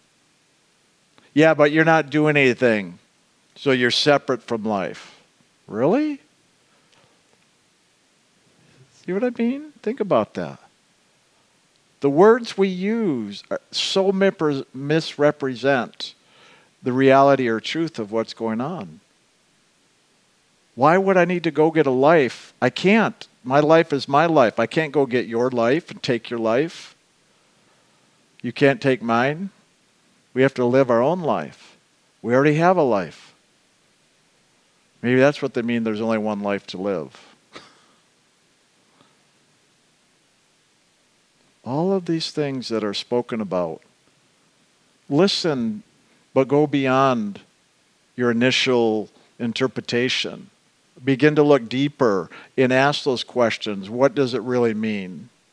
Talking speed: 125 wpm